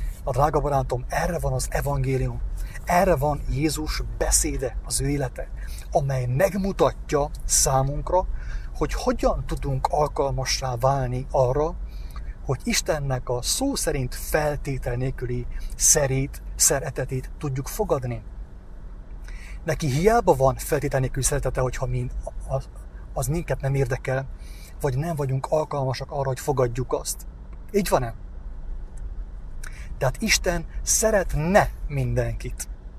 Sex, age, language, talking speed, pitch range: male, 30-49, English, 110 wpm, 130-160 Hz